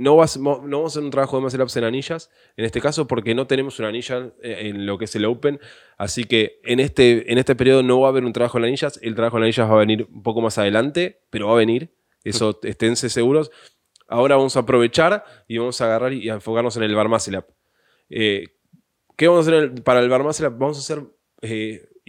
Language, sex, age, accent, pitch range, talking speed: Spanish, male, 20-39, Argentinian, 110-130 Hz, 230 wpm